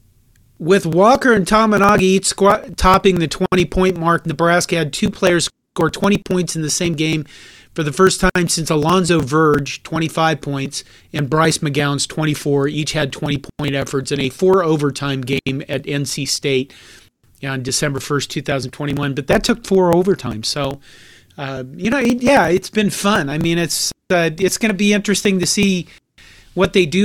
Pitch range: 135-185 Hz